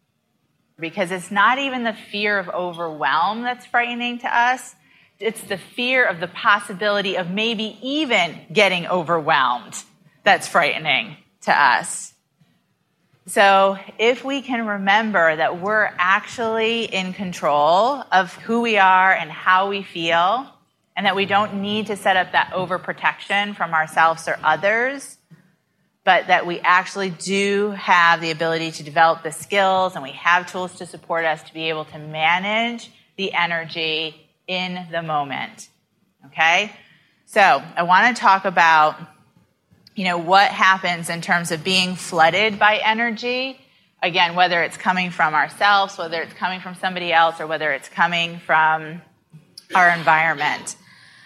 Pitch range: 165-210 Hz